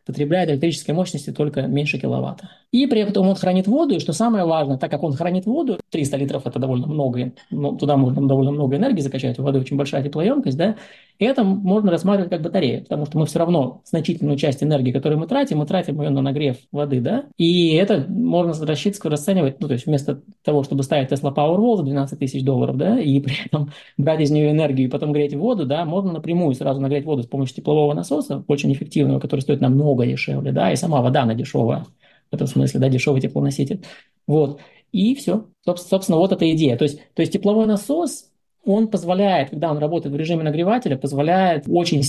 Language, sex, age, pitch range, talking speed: Russian, male, 20-39, 140-185 Hz, 205 wpm